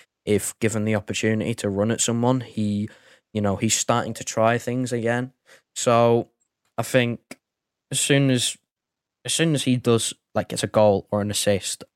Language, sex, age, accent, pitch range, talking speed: English, male, 10-29, British, 105-125 Hz, 175 wpm